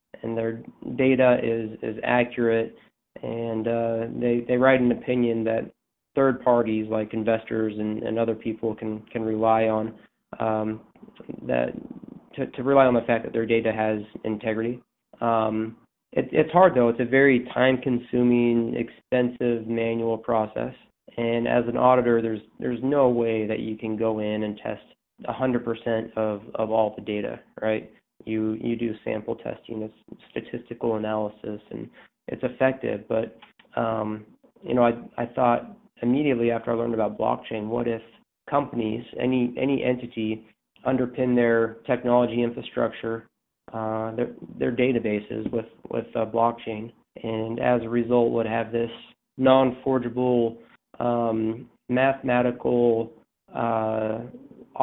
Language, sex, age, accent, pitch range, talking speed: English, male, 20-39, American, 110-120 Hz, 140 wpm